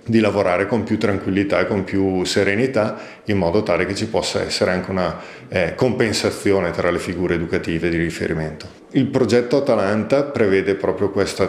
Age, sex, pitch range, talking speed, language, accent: 40-59, male, 90-110 Hz, 165 wpm, Italian, native